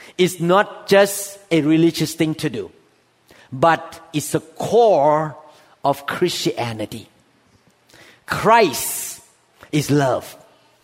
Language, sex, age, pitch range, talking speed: English, male, 50-69, 155-215 Hz, 95 wpm